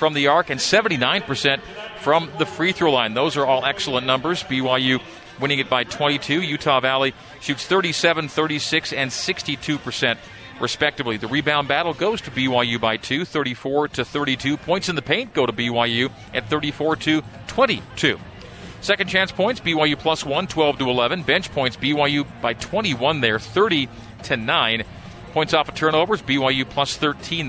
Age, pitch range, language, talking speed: 40-59, 130-155 Hz, English, 160 wpm